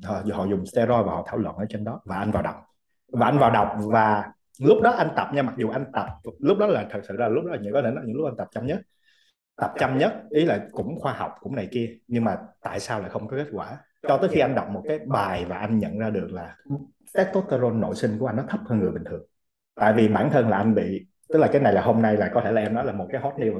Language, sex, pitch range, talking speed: Vietnamese, male, 105-140 Hz, 295 wpm